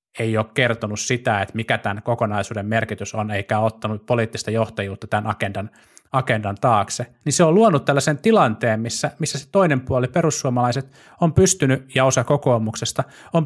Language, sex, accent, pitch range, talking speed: Finnish, male, native, 110-145 Hz, 160 wpm